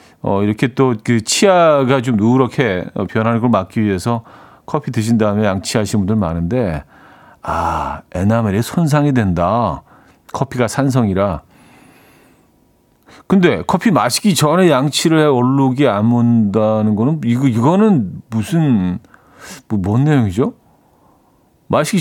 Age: 40-59